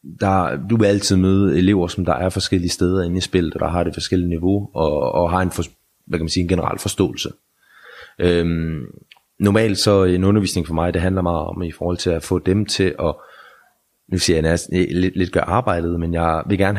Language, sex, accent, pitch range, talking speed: Danish, male, native, 85-95 Hz, 205 wpm